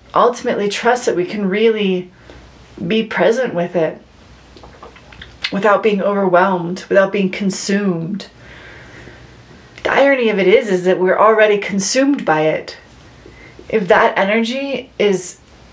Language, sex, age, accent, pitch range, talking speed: English, female, 30-49, American, 180-225 Hz, 120 wpm